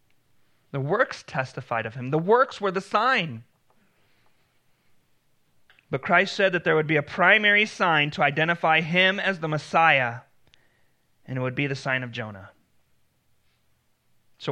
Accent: American